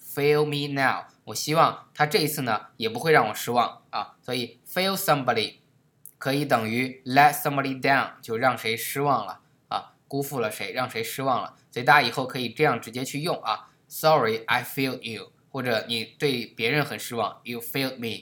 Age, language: 20-39, Chinese